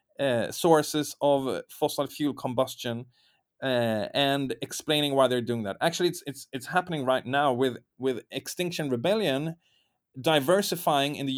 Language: English